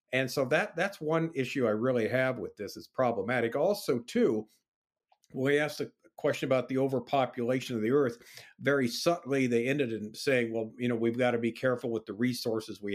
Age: 50-69